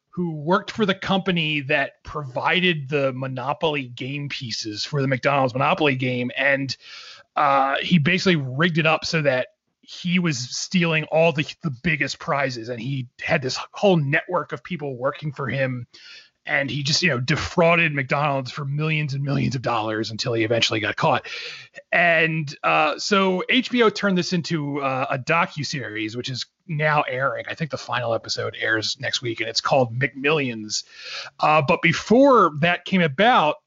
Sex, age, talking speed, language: male, 30-49, 170 wpm, English